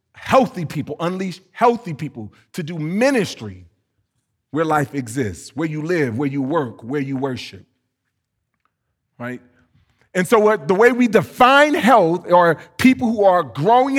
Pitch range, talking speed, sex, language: 130-215 Hz, 140 wpm, male, English